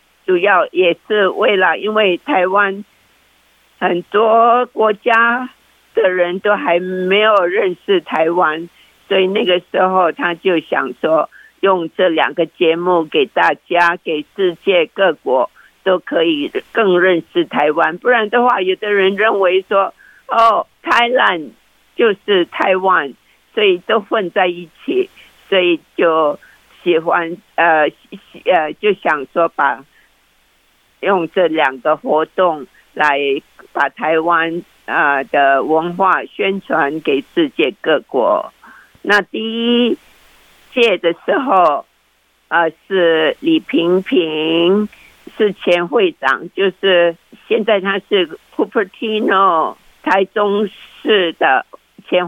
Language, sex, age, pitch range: Chinese, female, 50-69, 175-240 Hz